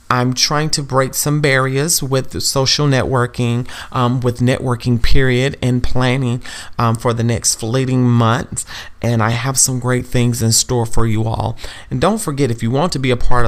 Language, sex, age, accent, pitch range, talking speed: English, male, 30-49, American, 110-135 Hz, 190 wpm